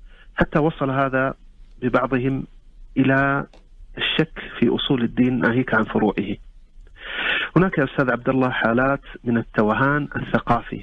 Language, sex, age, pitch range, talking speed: Arabic, male, 40-59, 115-140 Hz, 115 wpm